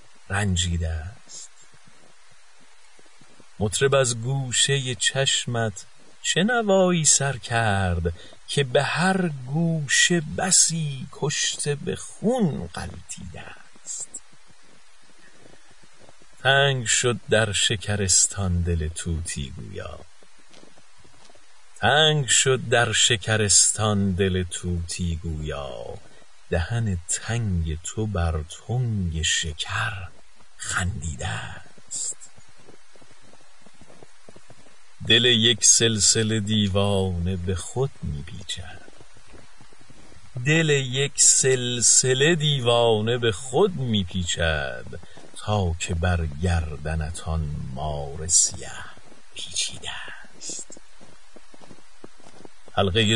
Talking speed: 75 wpm